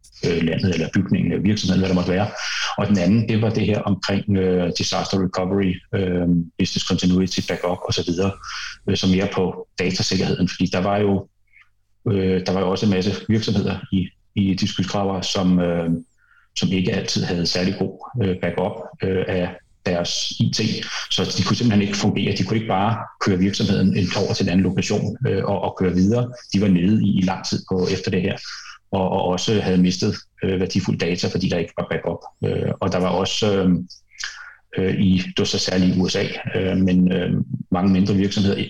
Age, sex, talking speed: 30-49, male, 190 wpm